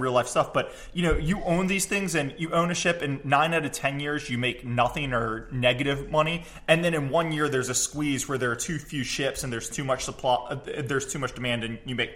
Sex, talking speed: male, 265 wpm